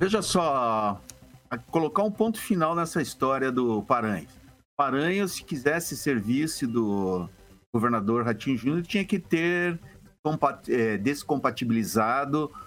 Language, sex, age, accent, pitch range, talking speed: Portuguese, male, 50-69, Brazilian, 125-195 Hz, 105 wpm